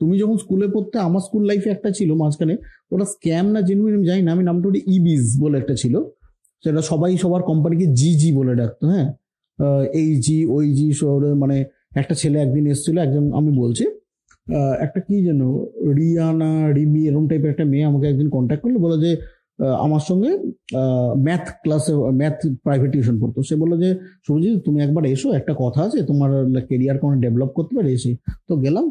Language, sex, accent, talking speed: English, male, Indian, 180 wpm